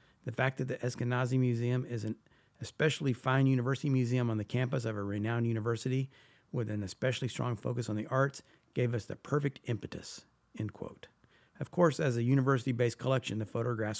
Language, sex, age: English, male, 50-69